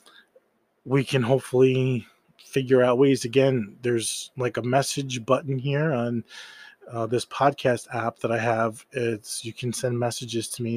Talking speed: 155 wpm